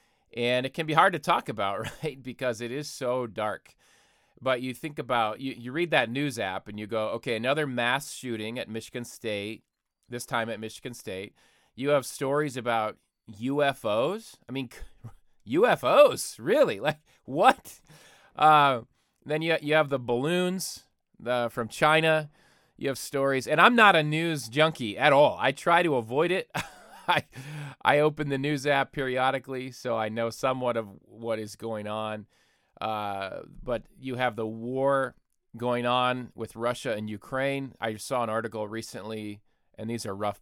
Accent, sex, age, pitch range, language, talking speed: American, male, 30-49, 110-135 Hz, English, 165 wpm